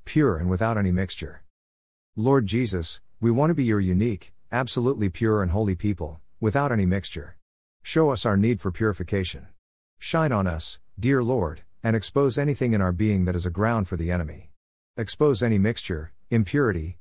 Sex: male